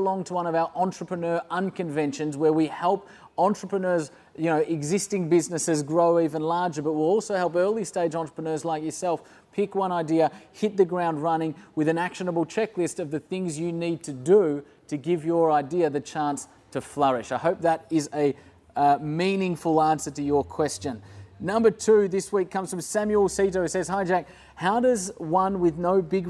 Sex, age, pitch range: male, 30-49, 145-175 Hz